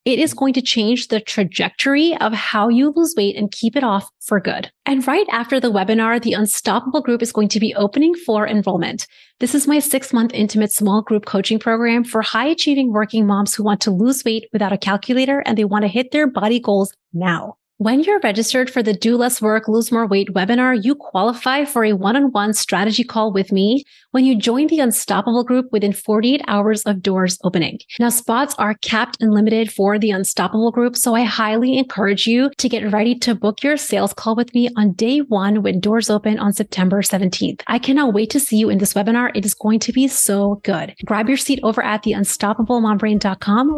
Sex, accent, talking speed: female, American, 210 wpm